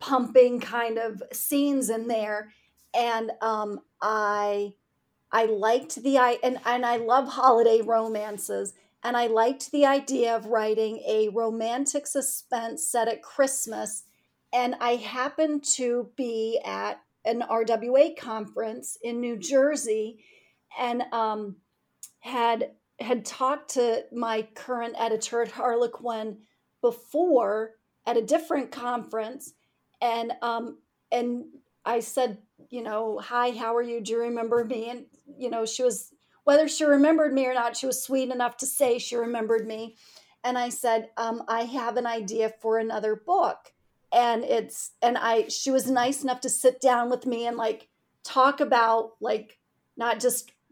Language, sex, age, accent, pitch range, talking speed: English, female, 40-59, American, 225-255 Hz, 150 wpm